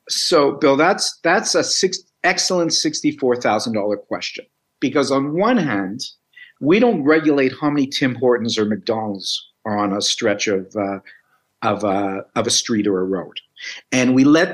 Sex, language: male, English